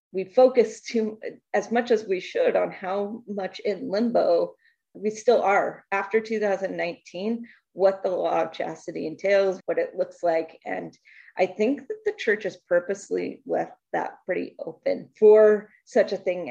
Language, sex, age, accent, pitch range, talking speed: English, female, 30-49, American, 180-245 Hz, 155 wpm